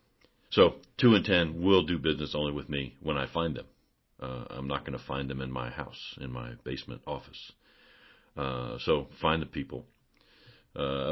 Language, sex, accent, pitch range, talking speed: English, male, American, 65-75 Hz, 185 wpm